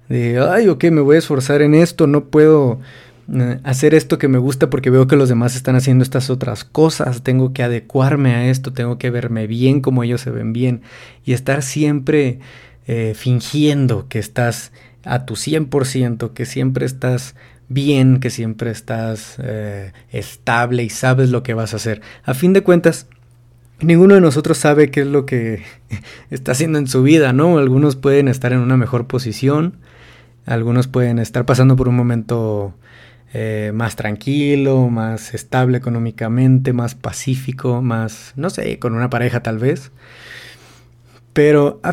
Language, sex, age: Spanish, male, 30-49